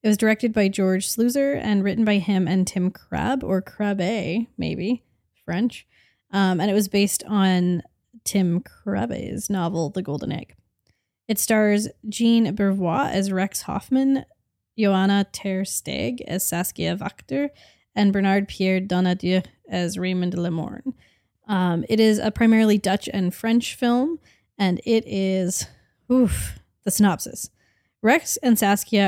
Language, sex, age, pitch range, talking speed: English, female, 10-29, 180-225 Hz, 135 wpm